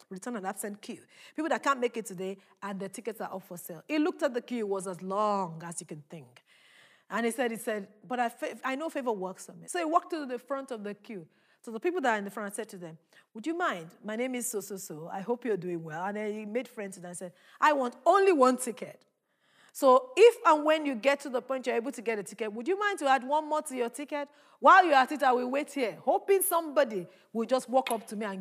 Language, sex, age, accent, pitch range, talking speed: English, female, 40-59, Nigerian, 210-310 Hz, 280 wpm